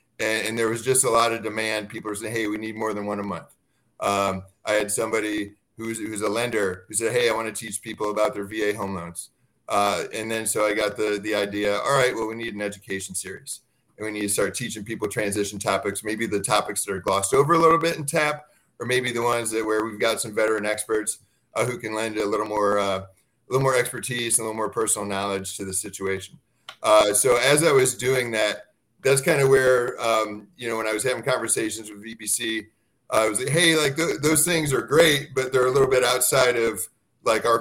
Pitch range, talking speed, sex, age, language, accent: 105-125 Hz, 245 wpm, male, 30-49, English, American